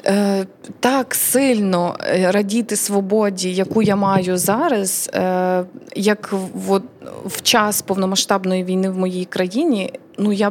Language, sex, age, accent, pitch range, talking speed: Ukrainian, female, 20-39, native, 190-215 Hz, 115 wpm